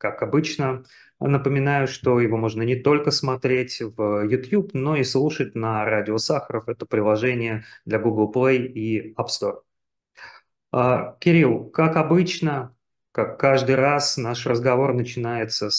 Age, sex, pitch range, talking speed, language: 30-49, male, 115-145 Hz, 130 wpm, Russian